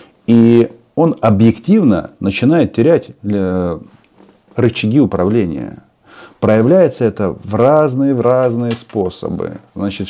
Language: Russian